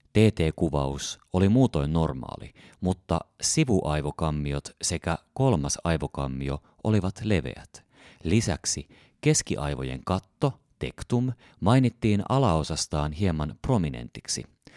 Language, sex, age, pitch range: Finnish, male, 30-49, 75-100 Hz